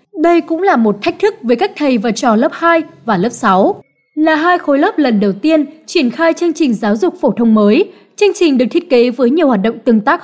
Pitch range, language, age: 230-325 Hz, Vietnamese, 20-39